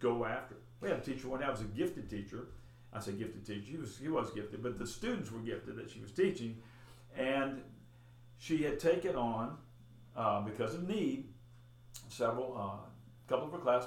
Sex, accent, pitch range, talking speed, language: male, American, 115-135 Hz, 190 wpm, English